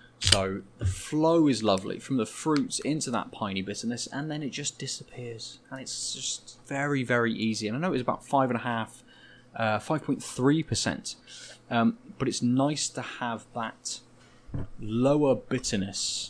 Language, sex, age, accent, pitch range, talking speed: English, male, 20-39, British, 100-130 Hz, 160 wpm